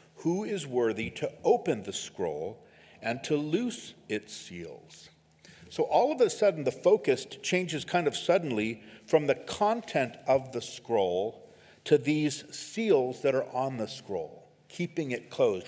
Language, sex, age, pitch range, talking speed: English, male, 50-69, 115-165 Hz, 155 wpm